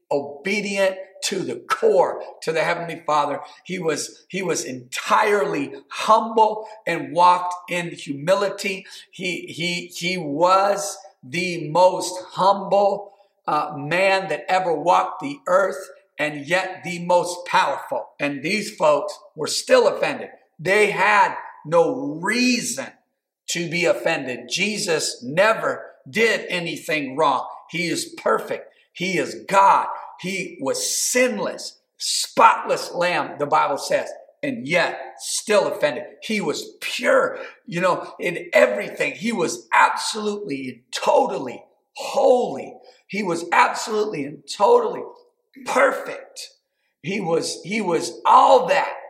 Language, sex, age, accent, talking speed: English, male, 50-69, American, 120 wpm